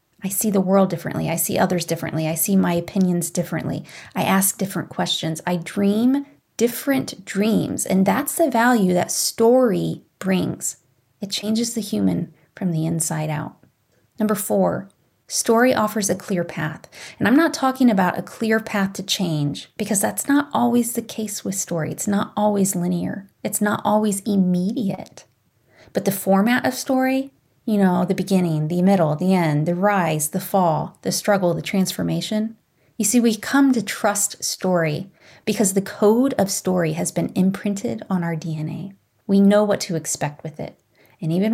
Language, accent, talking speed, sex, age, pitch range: English, American, 170 wpm, female, 30-49, 170-220 Hz